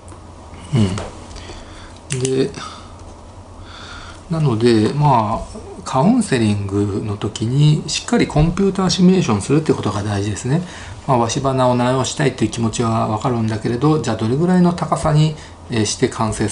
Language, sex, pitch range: Japanese, male, 105-140 Hz